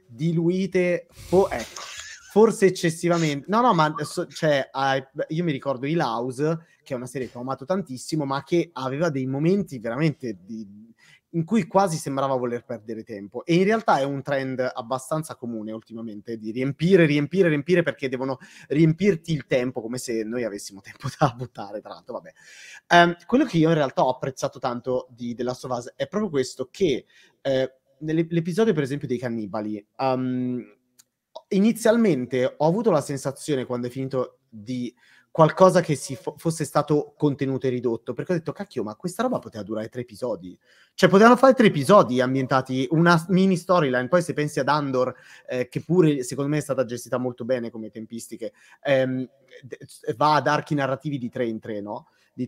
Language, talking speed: Italian, 175 wpm